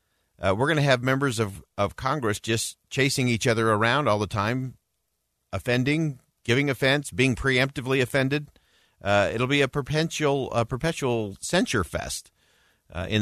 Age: 50-69